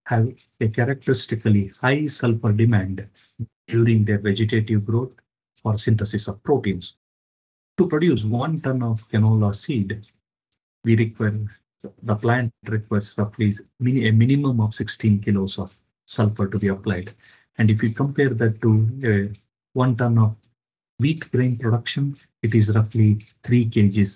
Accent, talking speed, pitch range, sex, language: Indian, 135 wpm, 105-125 Hz, male, English